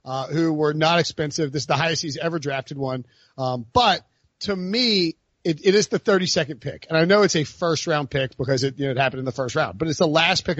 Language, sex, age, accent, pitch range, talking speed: English, male, 40-59, American, 145-185 Hz, 260 wpm